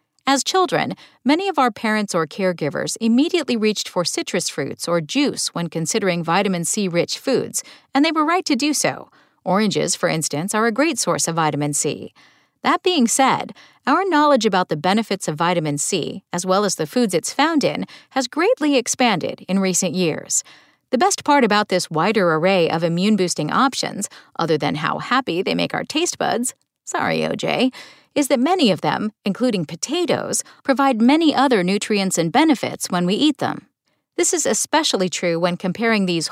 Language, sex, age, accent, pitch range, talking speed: English, female, 40-59, American, 180-270 Hz, 175 wpm